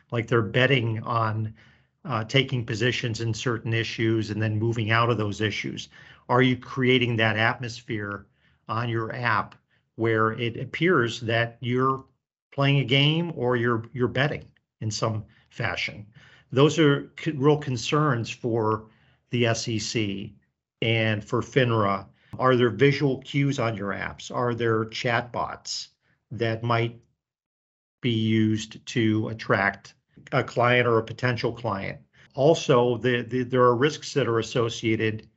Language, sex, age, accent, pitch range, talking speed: English, male, 50-69, American, 115-130 Hz, 135 wpm